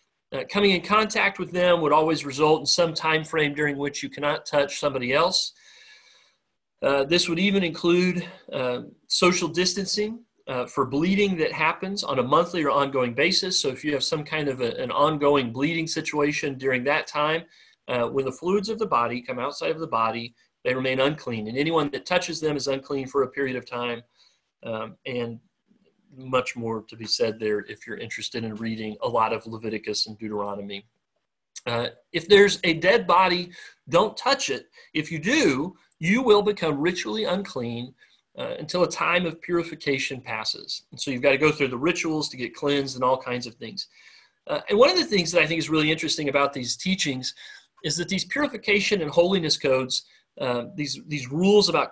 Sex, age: male, 40-59